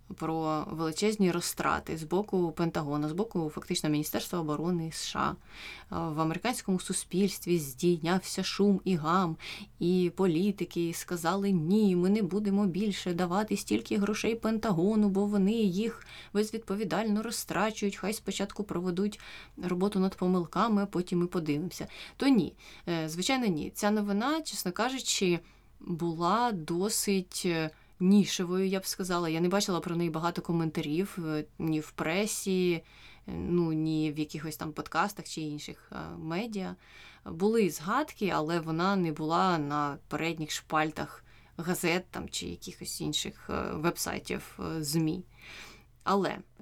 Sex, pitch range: female, 165-200 Hz